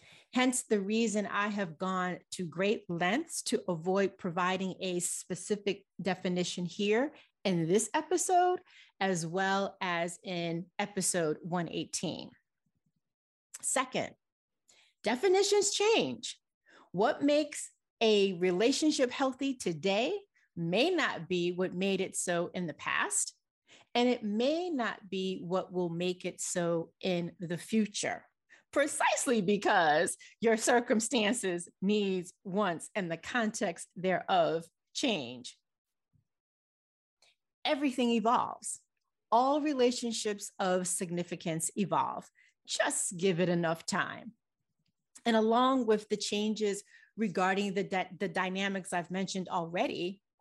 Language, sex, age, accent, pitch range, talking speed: English, female, 40-59, American, 180-235 Hz, 110 wpm